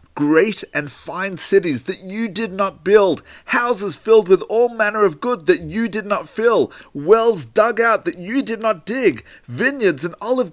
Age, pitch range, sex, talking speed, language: 40-59, 145-225 Hz, male, 180 wpm, English